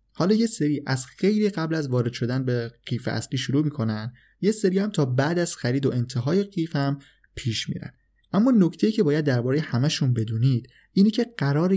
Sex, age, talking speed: male, 20-39, 195 wpm